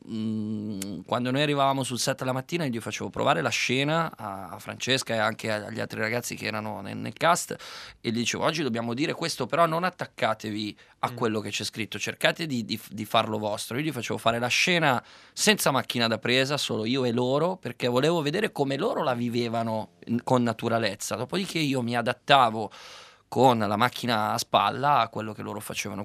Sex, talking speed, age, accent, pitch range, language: male, 185 wpm, 20-39, native, 110-140 Hz, Italian